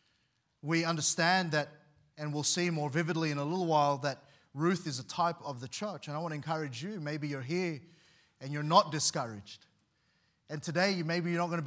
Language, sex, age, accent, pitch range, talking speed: English, male, 30-49, Australian, 150-180 Hz, 205 wpm